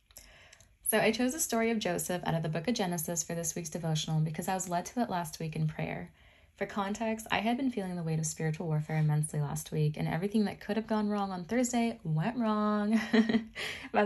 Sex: female